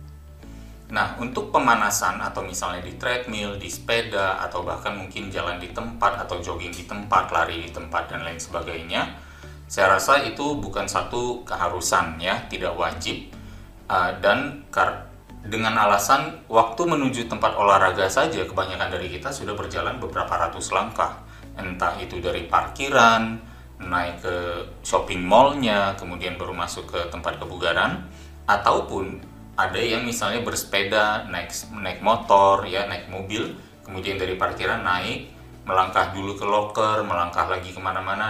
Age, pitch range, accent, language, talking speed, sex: 30-49, 85-110 Hz, native, Indonesian, 135 wpm, male